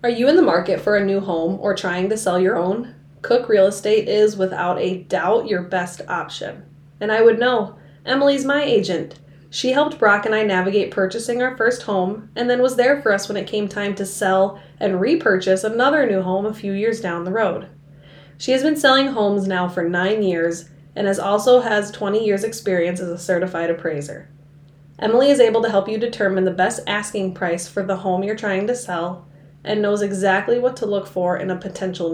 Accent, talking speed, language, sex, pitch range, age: American, 210 wpm, English, female, 180-225 Hz, 20-39